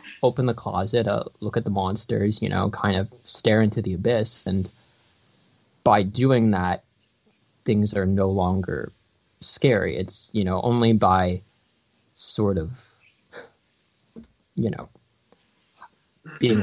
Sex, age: male, 20-39